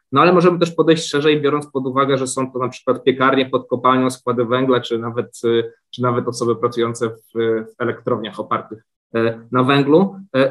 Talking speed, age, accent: 190 wpm, 20-39, native